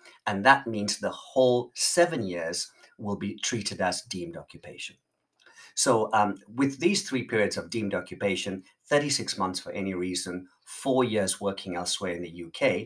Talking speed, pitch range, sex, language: 160 wpm, 95-125 Hz, male, English